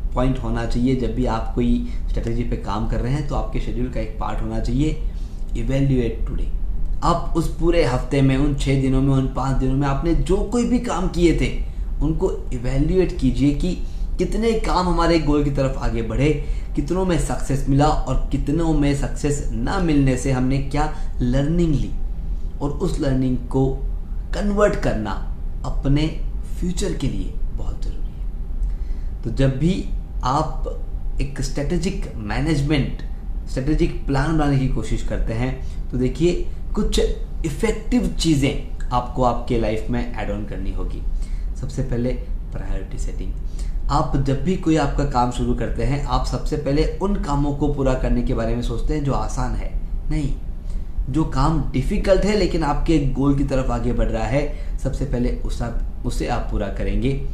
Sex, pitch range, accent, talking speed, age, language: male, 110-150 Hz, native, 165 wpm, 20-39, Hindi